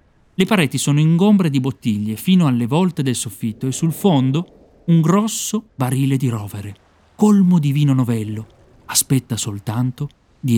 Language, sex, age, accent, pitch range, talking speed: Italian, male, 40-59, native, 115-180 Hz, 145 wpm